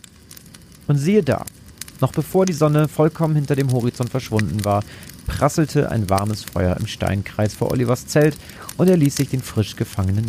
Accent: German